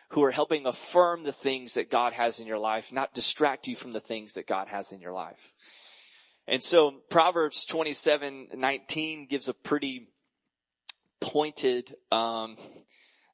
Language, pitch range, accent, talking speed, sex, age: English, 125-150 Hz, American, 155 wpm, male, 20-39